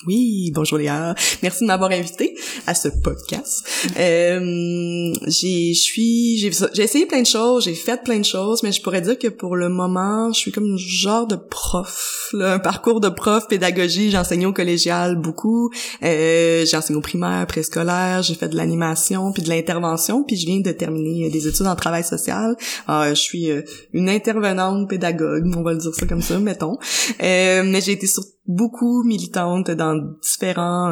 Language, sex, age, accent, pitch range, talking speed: French, female, 20-39, Canadian, 165-205 Hz, 180 wpm